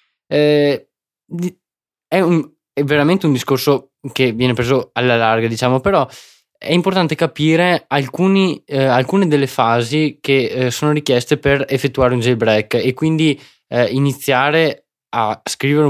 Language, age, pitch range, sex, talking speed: Italian, 20-39, 125-155 Hz, male, 135 wpm